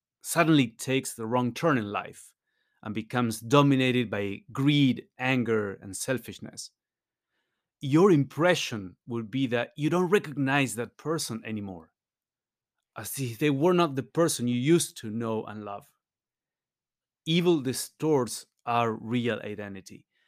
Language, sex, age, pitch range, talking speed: English, male, 30-49, 110-140 Hz, 130 wpm